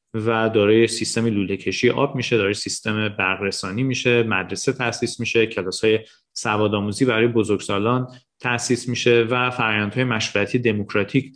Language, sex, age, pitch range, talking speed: Persian, male, 30-49, 110-125 Hz, 130 wpm